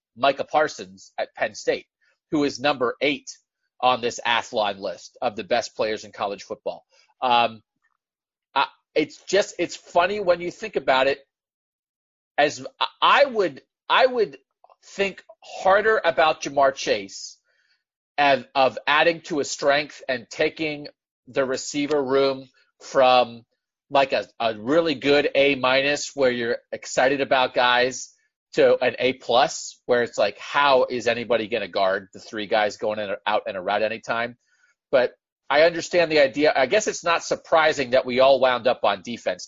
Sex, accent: male, American